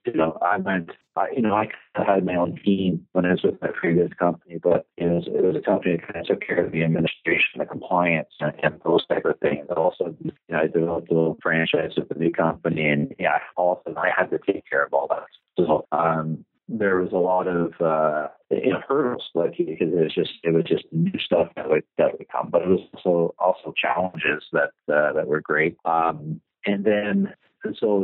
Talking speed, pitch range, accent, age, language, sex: 230 wpm, 80-90 Hz, American, 40-59, English, male